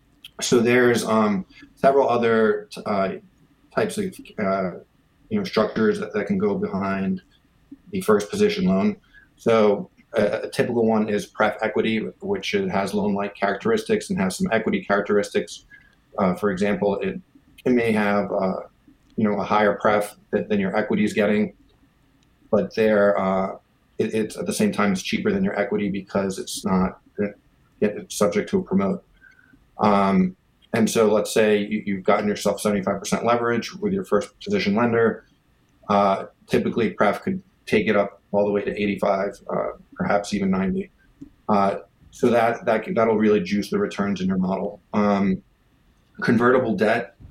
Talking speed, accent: 160 wpm, American